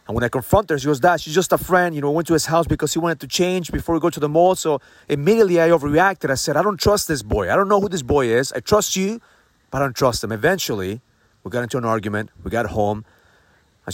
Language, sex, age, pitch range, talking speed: English, male, 30-49, 110-175 Hz, 275 wpm